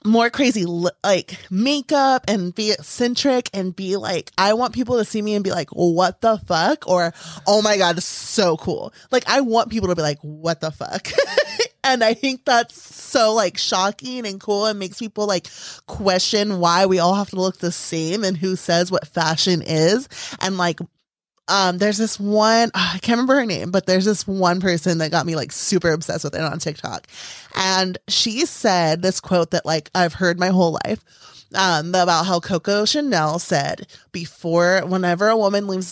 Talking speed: 195 wpm